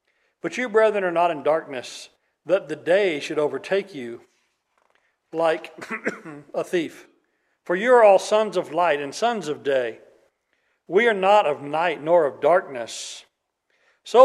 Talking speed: 150 wpm